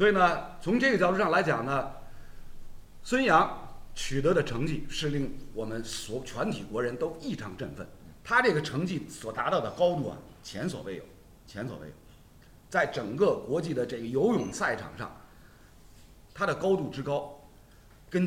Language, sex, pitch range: Chinese, male, 115-160 Hz